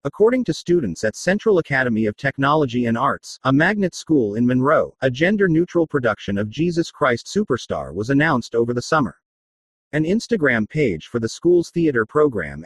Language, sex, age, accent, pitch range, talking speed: English, male, 40-59, American, 120-165 Hz, 165 wpm